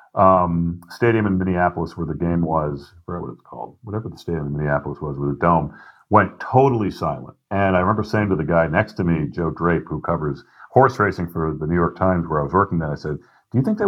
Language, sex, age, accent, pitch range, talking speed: English, male, 40-59, American, 85-105 Hz, 240 wpm